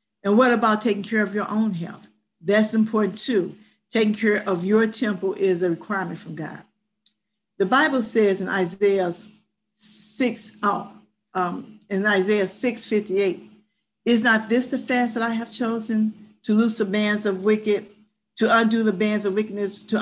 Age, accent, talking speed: 50-69, American, 160 wpm